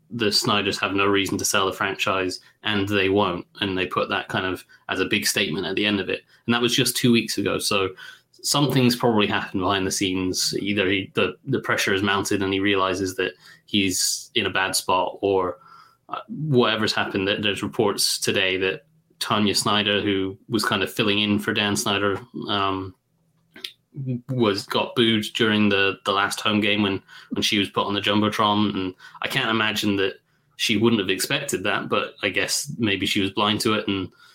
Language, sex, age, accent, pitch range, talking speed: English, male, 20-39, British, 95-115 Hz, 195 wpm